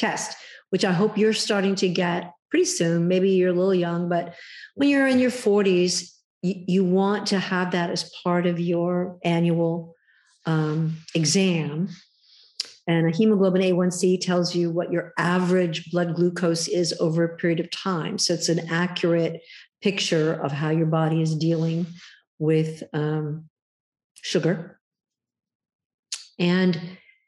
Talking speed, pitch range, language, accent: 145 wpm, 170-190 Hz, English, American